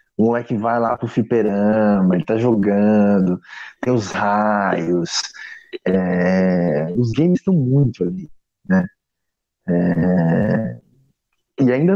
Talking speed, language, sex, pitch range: 115 wpm, Portuguese, male, 105-165 Hz